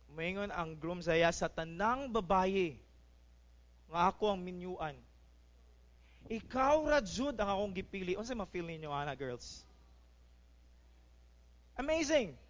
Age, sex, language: 20-39, male, English